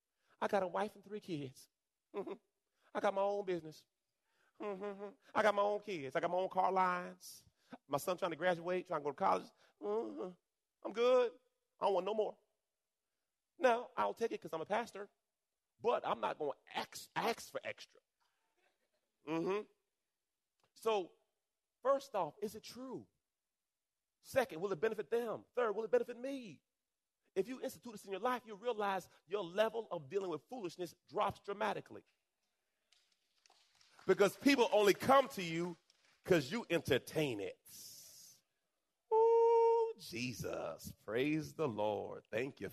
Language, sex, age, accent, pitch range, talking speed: English, male, 30-49, American, 170-235 Hz, 160 wpm